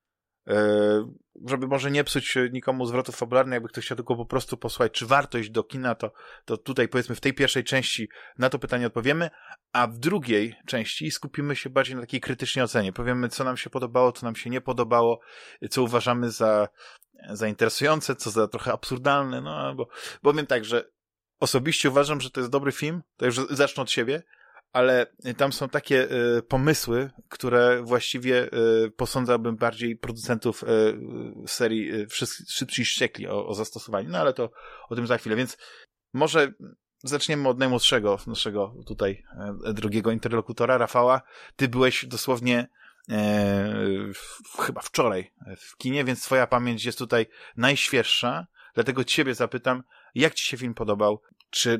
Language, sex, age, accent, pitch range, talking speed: Polish, male, 20-39, native, 115-130 Hz, 155 wpm